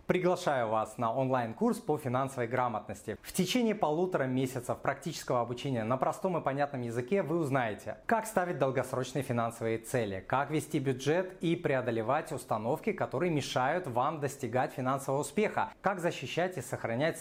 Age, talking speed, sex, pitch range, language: 30-49, 145 wpm, male, 125-180 Hz, Russian